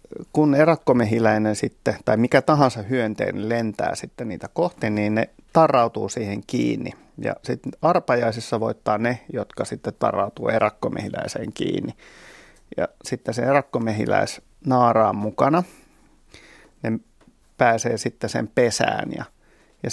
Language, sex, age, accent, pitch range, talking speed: Finnish, male, 30-49, native, 110-130 Hz, 115 wpm